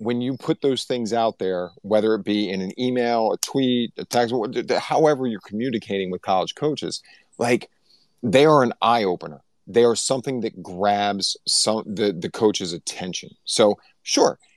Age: 40-59